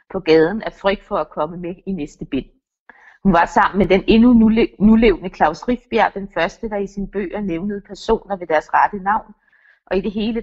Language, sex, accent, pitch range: Danish, female, native, 175-215 Hz